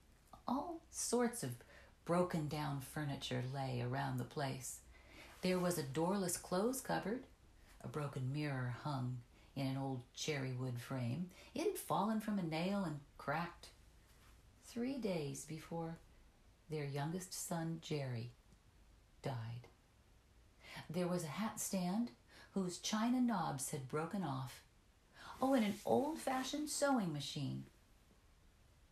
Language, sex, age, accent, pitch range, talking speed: English, female, 50-69, American, 130-205 Hz, 120 wpm